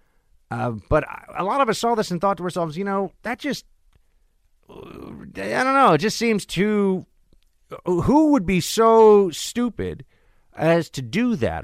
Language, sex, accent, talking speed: English, male, American, 165 wpm